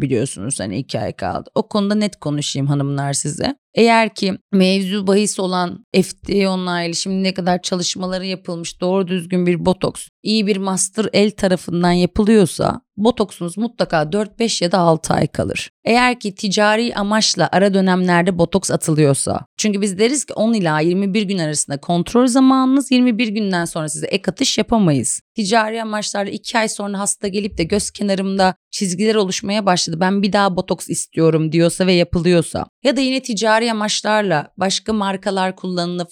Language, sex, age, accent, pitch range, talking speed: Turkish, female, 30-49, native, 170-215 Hz, 160 wpm